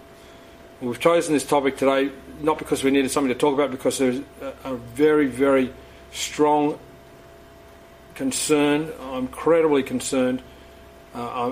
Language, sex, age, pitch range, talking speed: English, male, 40-59, 125-150 Hz, 125 wpm